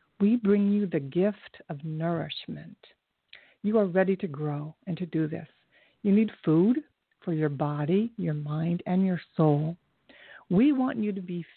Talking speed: 165 wpm